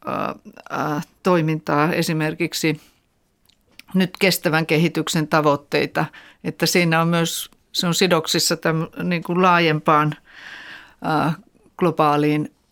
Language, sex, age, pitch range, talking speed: Finnish, female, 50-69, 165-190 Hz, 70 wpm